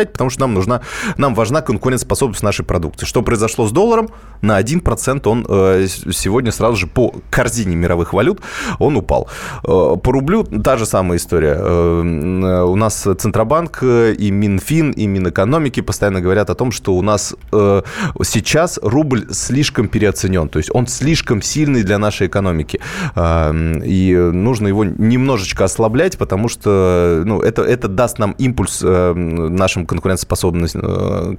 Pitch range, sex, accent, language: 90-125 Hz, male, native, Russian